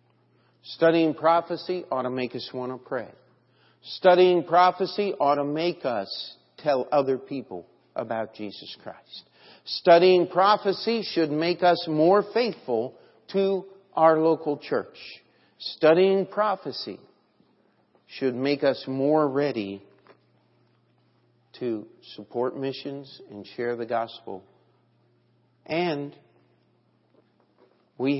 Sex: male